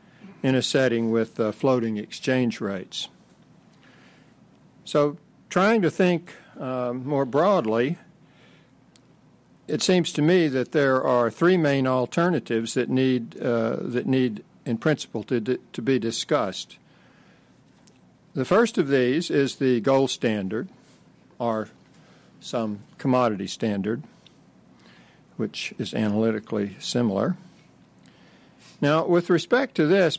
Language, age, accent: English, 60-79, American